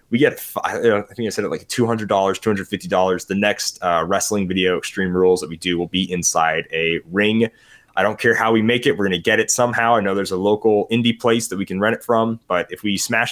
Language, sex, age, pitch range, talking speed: English, male, 20-39, 95-120 Hz, 245 wpm